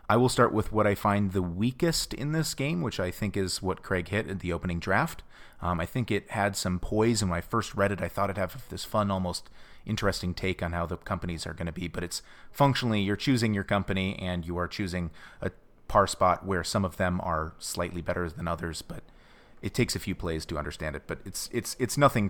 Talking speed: 245 wpm